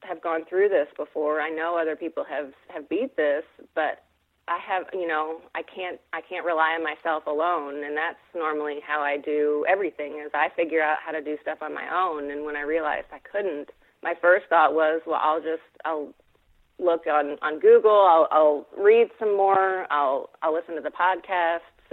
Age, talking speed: 30-49, 200 wpm